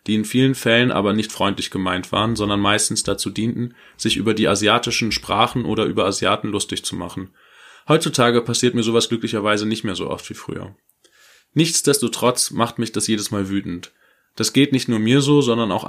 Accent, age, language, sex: German, 20-39, German, male